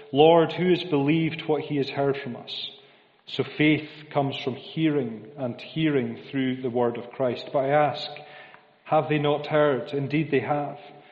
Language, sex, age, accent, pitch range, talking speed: English, male, 40-59, British, 120-145 Hz, 175 wpm